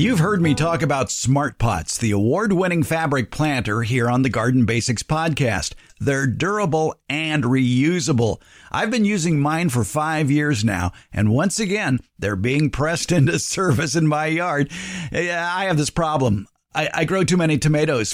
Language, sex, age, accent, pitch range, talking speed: English, male, 50-69, American, 125-175 Hz, 170 wpm